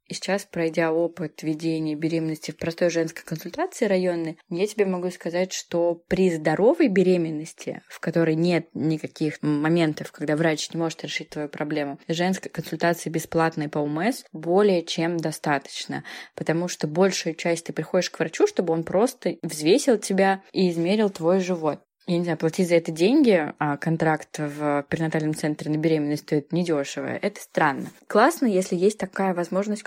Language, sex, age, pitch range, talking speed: Russian, female, 20-39, 155-185 Hz, 160 wpm